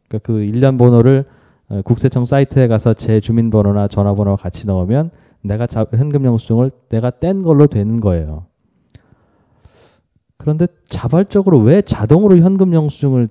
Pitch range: 105-145 Hz